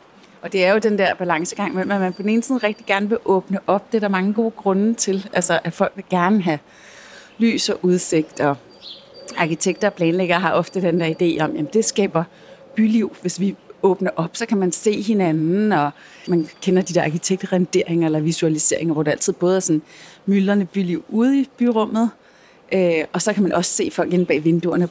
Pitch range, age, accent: 175-215 Hz, 30-49, native